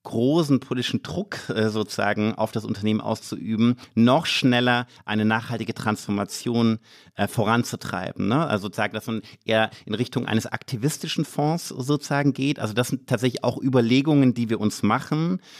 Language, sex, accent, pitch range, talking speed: German, male, German, 110-130 Hz, 140 wpm